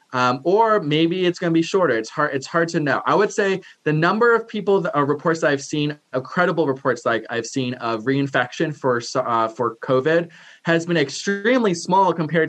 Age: 20-39